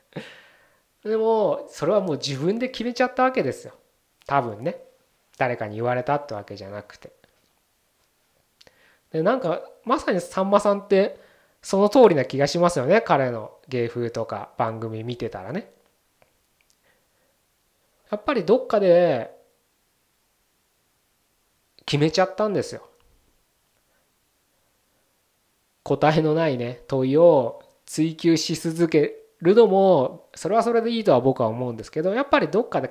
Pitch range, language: 135-220 Hz, Japanese